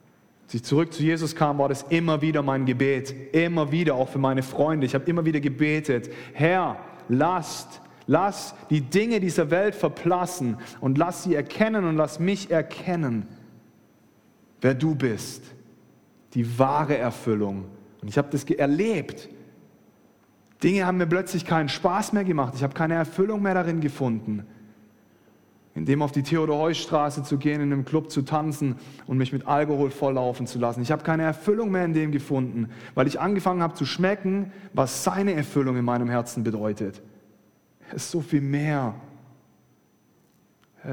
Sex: male